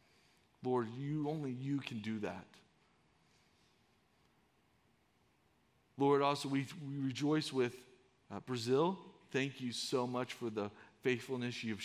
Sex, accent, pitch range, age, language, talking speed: male, American, 115-155 Hz, 40-59, English, 115 wpm